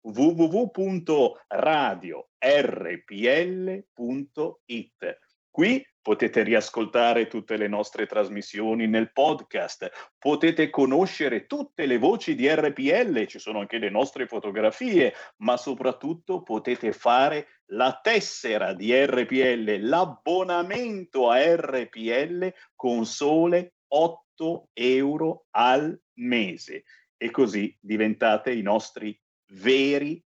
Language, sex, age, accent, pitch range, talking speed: Italian, male, 50-69, native, 120-190 Hz, 90 wpm